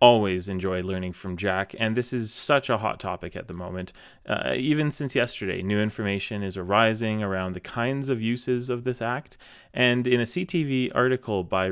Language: English